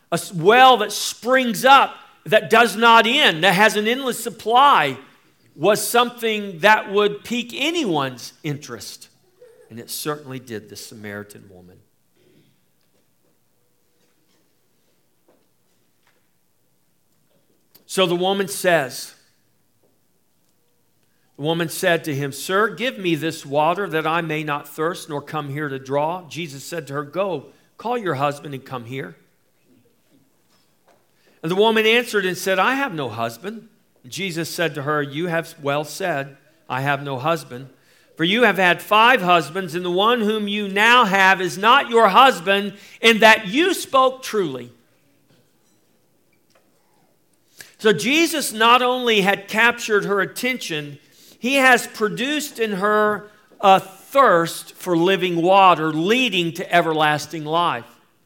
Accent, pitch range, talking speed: American, 150-225 Hz, 135 wpm